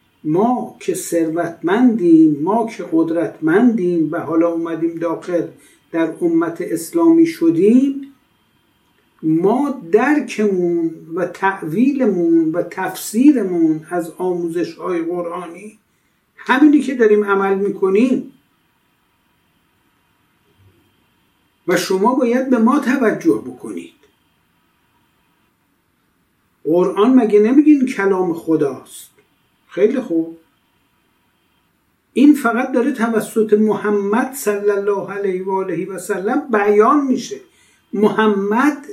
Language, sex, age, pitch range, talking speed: Persian, male, 60-79, 175-265 Hz, 90 wpm